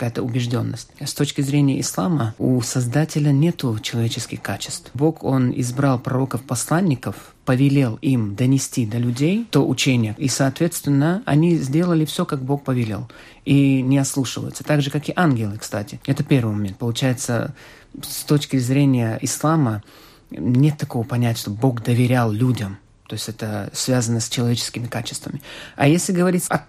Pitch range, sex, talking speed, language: 125-155 Hz, male, 145 wpm, Russian